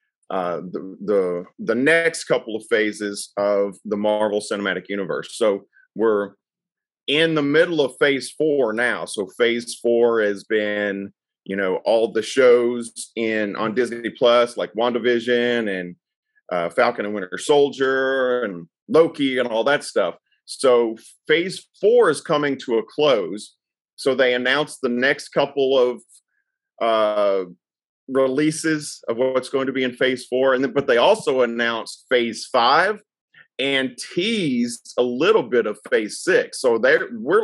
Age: 40-59